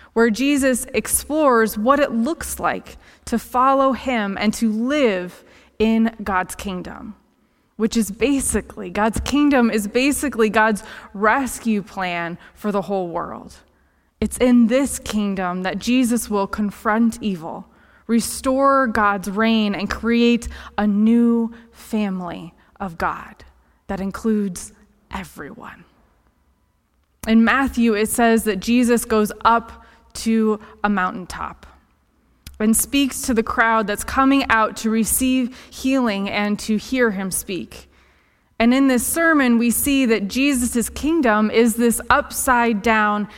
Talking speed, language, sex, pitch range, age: 125 wpm, English, female, 210-245 Hz, 20-39